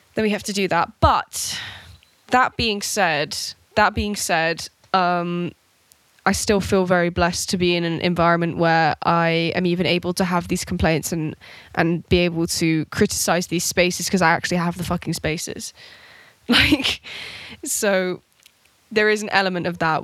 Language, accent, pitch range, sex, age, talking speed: English, British, 165-195 Hz, female, 10-29, 170 wpm